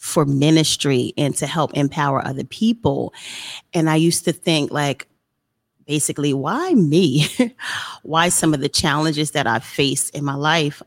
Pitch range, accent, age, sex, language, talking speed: 145-180 Hz, American, 30-49, female, English, 155 wpm